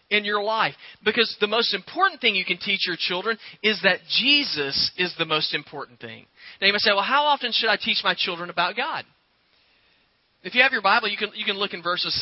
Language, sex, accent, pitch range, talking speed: English, male, American, 180-240 Hz, 230 wpm